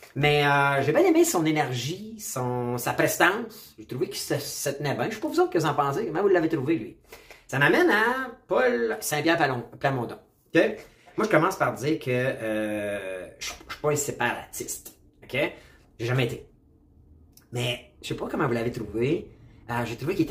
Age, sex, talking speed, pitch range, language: 30-49, male, 190 wpm, 115-160 Hz, French